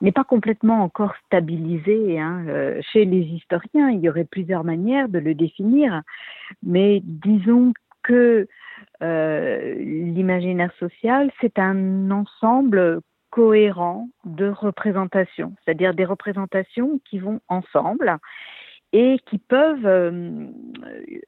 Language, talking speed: French, 115 wpm